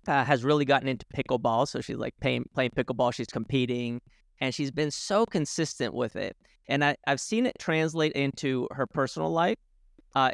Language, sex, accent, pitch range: English, male, American, 130-165 Hz